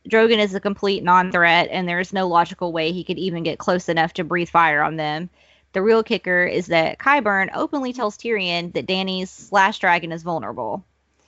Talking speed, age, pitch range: 195 wpm, 20-39, 175-210 Hz